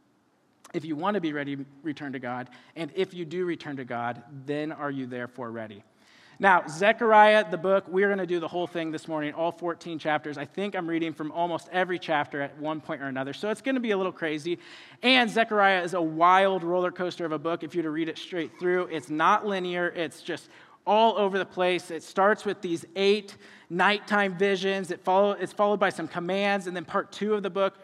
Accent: American